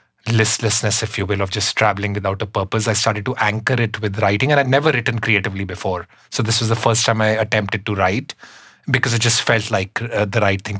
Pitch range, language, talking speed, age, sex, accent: 100-115 Hz, English, 235 wpm, 20-39, male, Indian